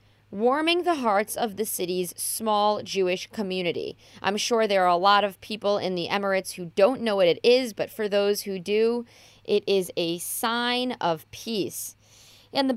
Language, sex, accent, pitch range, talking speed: English, female, American, 185-240 Hz, 185 wpm